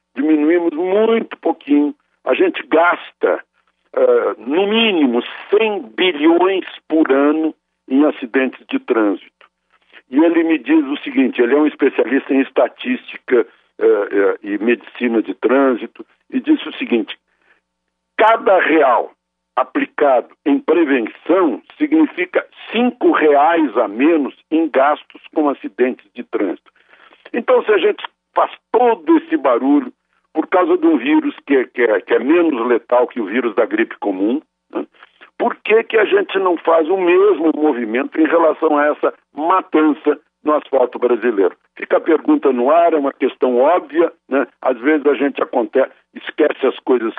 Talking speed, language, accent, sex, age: 150 wpm, Portuguese, Brazilian, male, 60-79